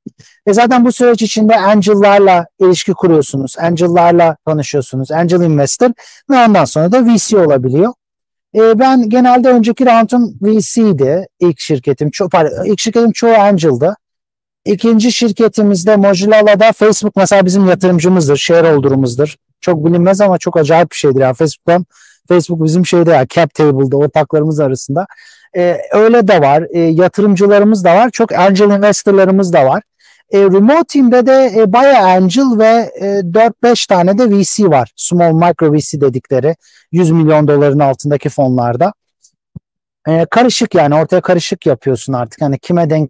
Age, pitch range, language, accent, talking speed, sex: 50-69, 155-220 Hz, Turkish, native, 140 wpm, male